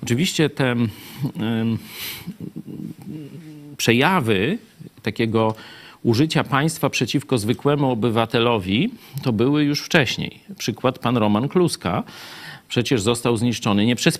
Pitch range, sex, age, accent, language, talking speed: 115-150 Hz, male, 40-59, native, Polish, 95 wpm